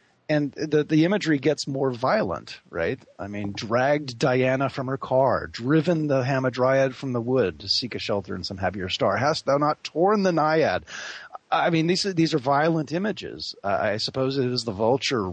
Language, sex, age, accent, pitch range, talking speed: English, male, 40-59, American, 105-145 Hz, 190 wpm